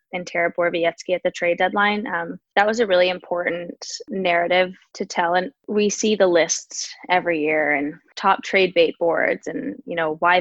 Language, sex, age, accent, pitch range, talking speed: English, female, 20-39, American, 170-195 Hz, 180 wpm